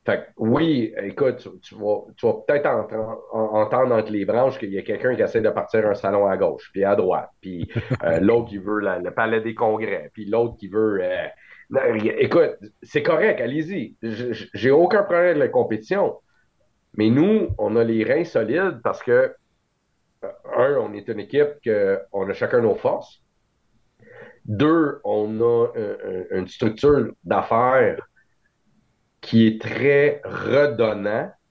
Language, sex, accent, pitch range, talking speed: French, male, Canadian, 110-155 Hz, 170 wpm